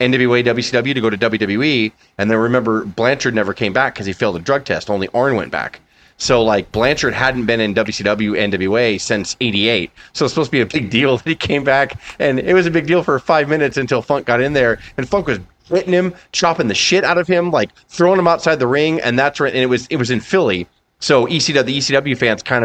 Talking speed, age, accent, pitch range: 245 wpm, 30-49, American, 110-140 Hz